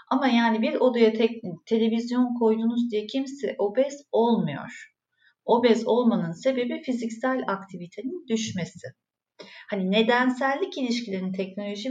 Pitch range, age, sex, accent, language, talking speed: 180-240 Hz, 40-59, female, native, Turkish, 105 wpm